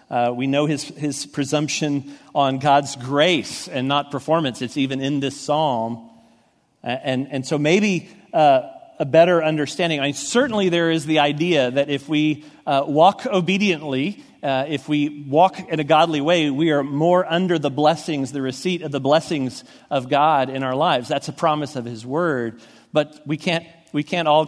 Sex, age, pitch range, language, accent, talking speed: male, 40-59, 140-170 Hz, English, American, 180 wpm